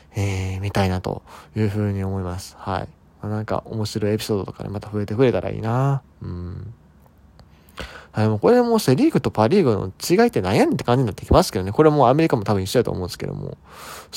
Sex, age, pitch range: male, 20-39, 95-130 Hz